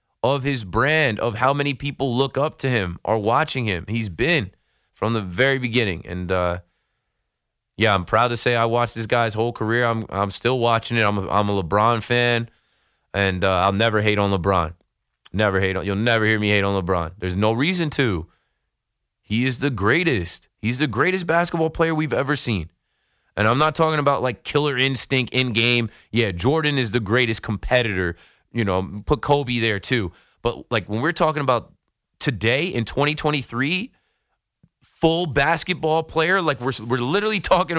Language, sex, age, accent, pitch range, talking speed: English, male, 20-39, American, 105-140 Hz, 185 wpm